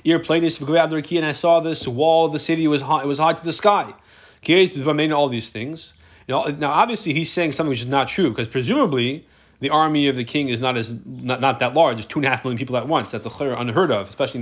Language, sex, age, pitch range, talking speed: English, male, 30-49, 130-170 Hz, 235 wpm